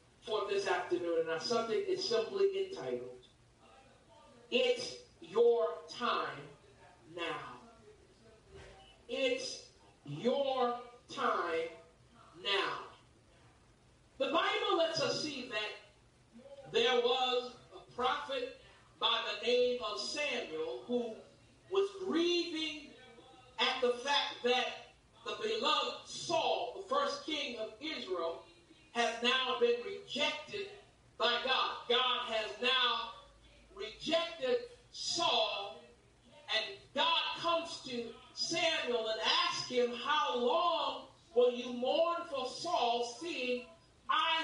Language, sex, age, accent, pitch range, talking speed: English, male, 50-69, American, 245-360 Hz, 100 wpm